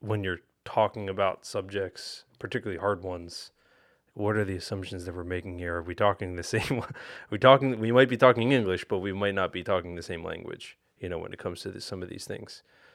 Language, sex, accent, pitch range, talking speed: English, male, American, 95-120 Hz, 225 wpm